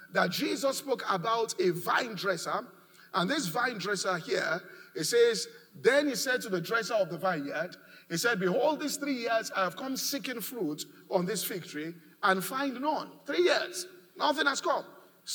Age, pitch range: 50-69, 215-310 Hz